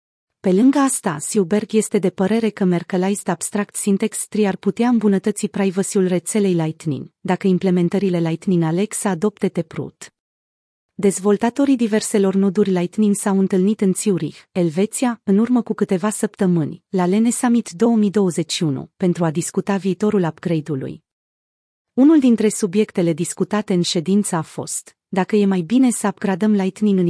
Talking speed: 140 wpm